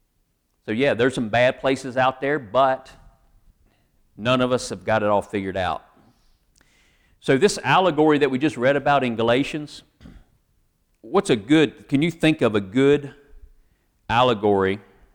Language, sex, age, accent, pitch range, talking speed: English, male, 40-59, American, 95-135 Hz, 150 wpm